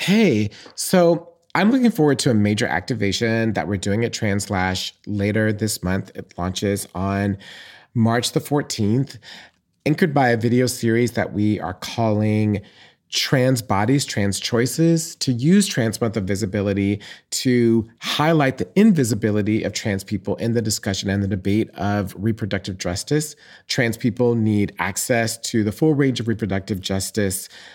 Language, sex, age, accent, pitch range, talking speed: English, male, 30-49, American, 105-140 Hz, 150 wpm